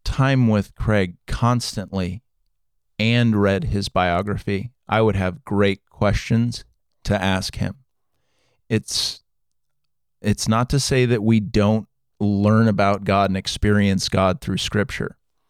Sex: male